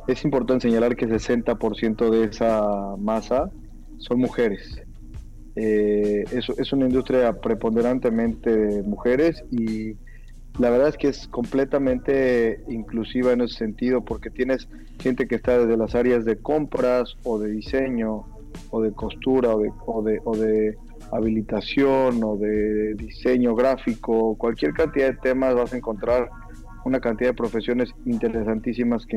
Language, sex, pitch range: Spanish, male, 110-125 Hz